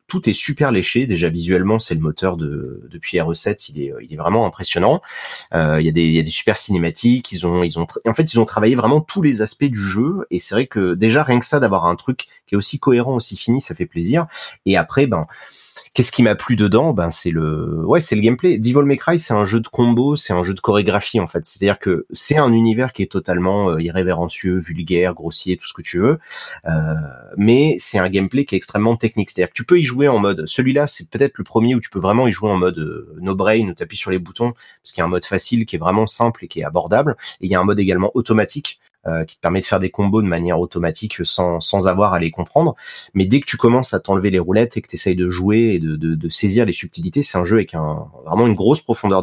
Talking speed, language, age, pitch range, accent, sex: 265 wpm, French, 30-49, 90-115 Hz, French, male